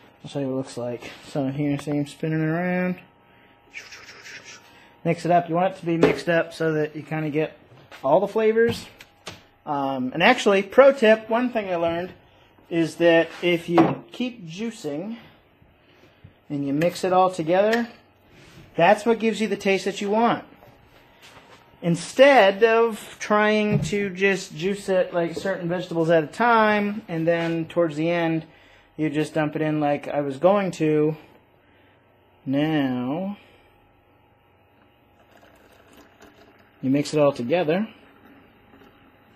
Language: English